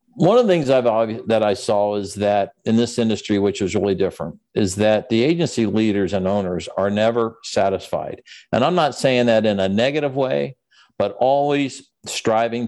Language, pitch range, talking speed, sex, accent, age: English, 105-130 Hz, 180 wpm, male, American, 50-69